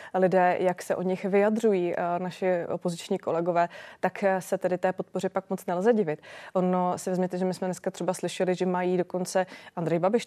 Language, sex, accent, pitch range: Czech, female, native, 170-185 Hz